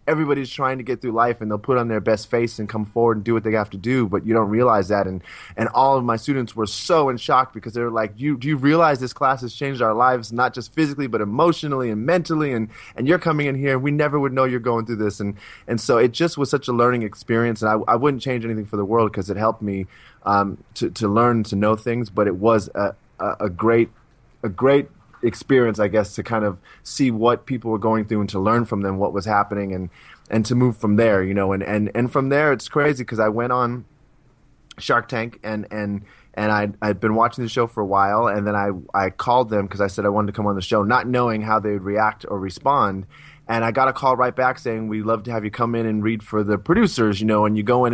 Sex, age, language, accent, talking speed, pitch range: male, 20-39, English, American, 270 wpm, 105-125 Hz